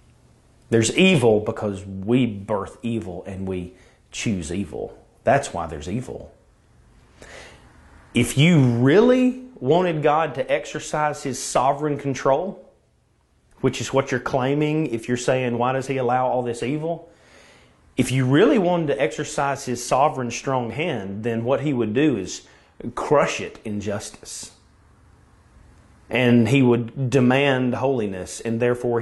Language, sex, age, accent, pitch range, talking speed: English, male, 30-49, American, 105-135 Hz, 135 wpm